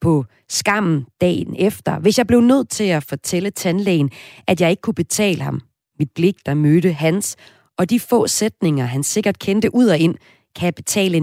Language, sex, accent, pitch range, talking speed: Danish, female, native, 150-195 Hz, 190 wpm